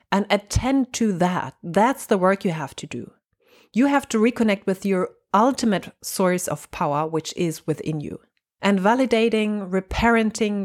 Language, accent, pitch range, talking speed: English, German, 175-230 Hz, 160 wpm